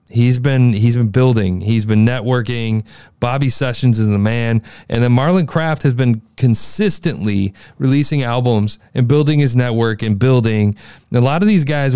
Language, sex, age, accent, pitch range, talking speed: English, male, 40-59, American, 110-135 Hz, 170 wpm